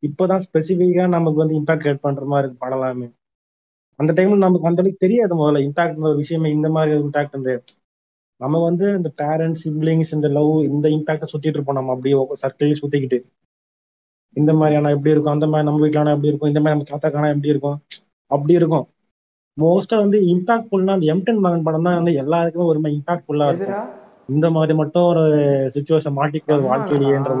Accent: native